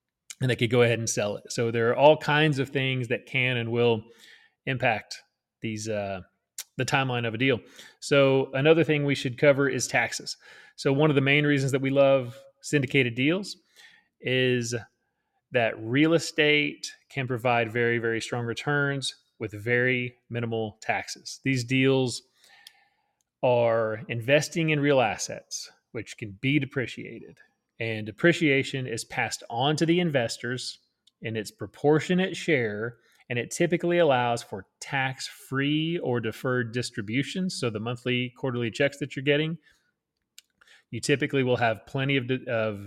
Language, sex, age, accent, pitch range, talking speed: English, male, 30-49, American, 120-145 Hz, 150 wpm